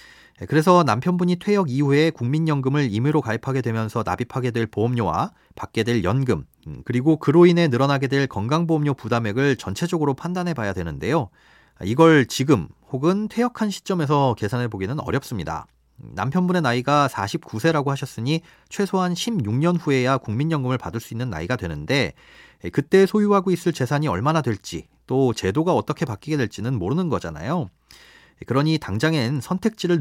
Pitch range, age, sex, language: 115-170 Hz, 40-59, male, Korean